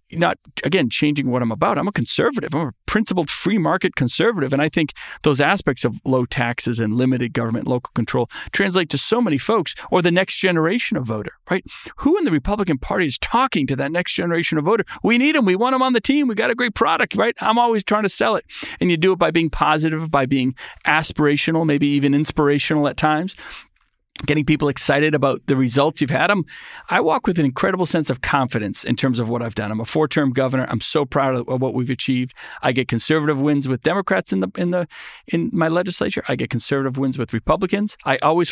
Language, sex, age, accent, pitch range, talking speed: English, male, 40-59, American, 130-175 Hz, 225 wpm